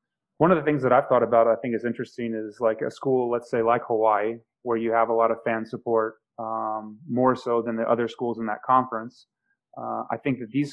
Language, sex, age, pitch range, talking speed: English, male, 30-49, 110-120 Hz, 240 wpm